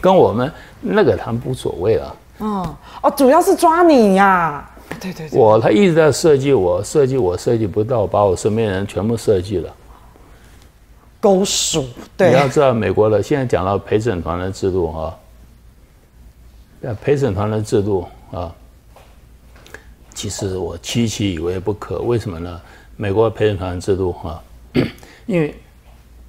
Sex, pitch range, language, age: male, 90-125 Hz, Chinese, 60-79